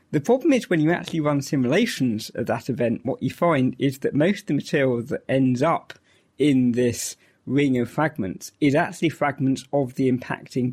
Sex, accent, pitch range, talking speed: male, British, 120-145 Hz, 190 wpm